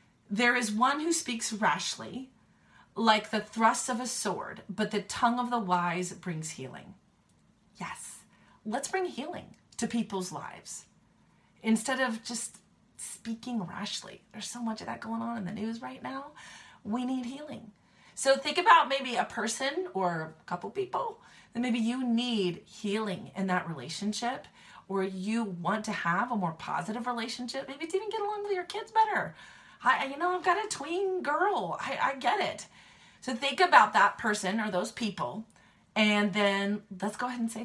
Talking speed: 175 wpm